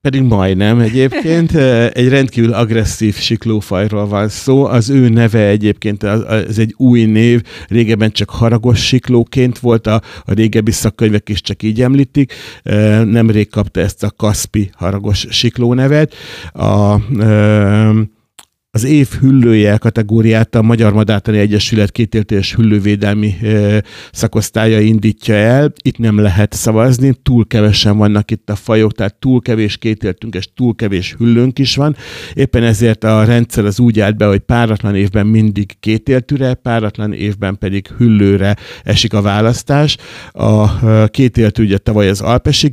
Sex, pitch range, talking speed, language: male, 105-120 Hz, 135 wpm, Hungarian